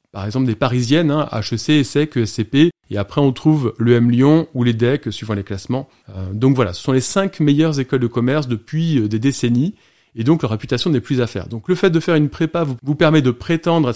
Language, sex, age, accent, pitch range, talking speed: French, male, 30-49, French, 120-160 Hz, 230 wpm